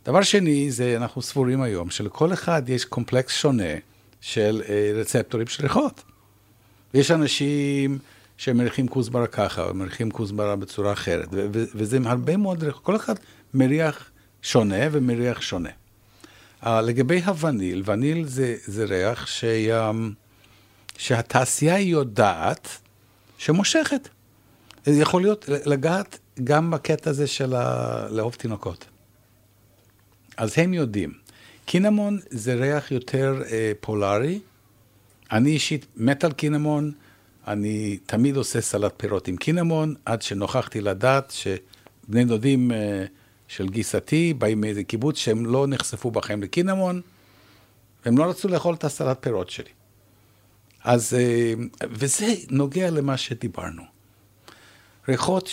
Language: Hebrew